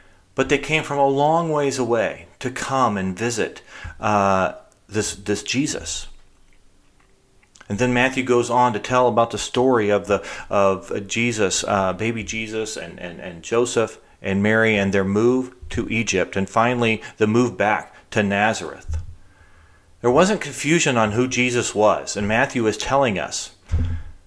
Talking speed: 155 wpm